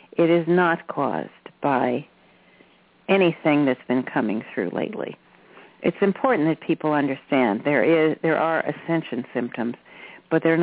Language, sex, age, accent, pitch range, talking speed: English, female, 50-69, American, 150-180 Hz, 135 wpm